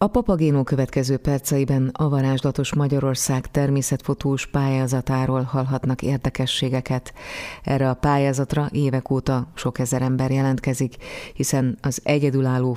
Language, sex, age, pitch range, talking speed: Hungarian, female, 30-49, 125-140 Hz, 110 wpm